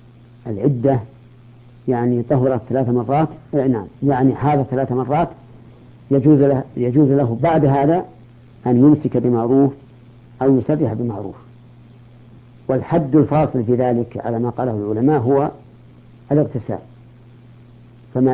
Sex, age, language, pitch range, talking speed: female, 50-69, Arabic, 120-140 Hz, 105 wpm